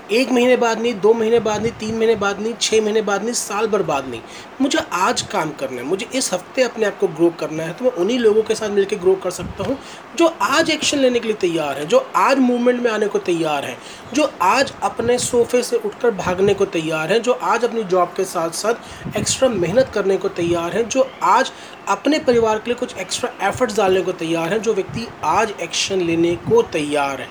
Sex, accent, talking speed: male, native, 225 wpm